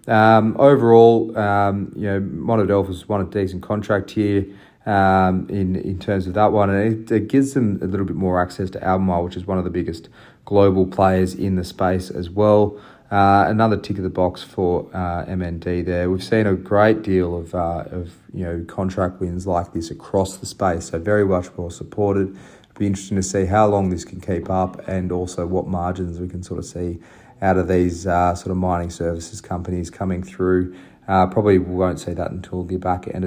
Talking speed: 205 wpm